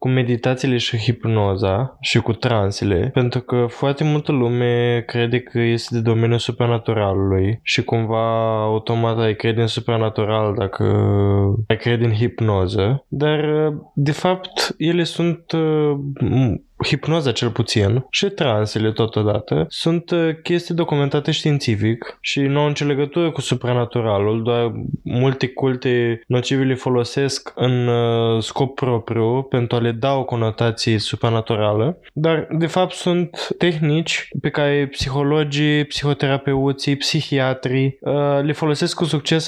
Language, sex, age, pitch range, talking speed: Romanian, male, 10-29, 120-150 Hz, 125 wpm